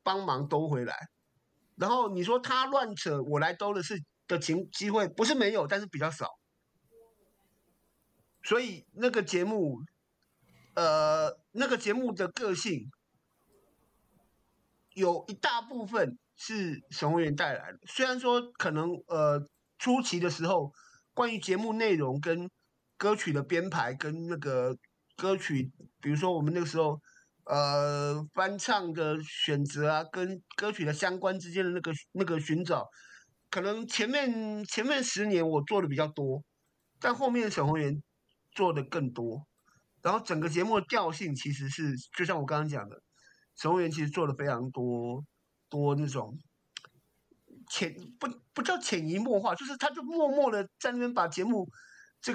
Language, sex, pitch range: Chinese, male, 150-215 Hz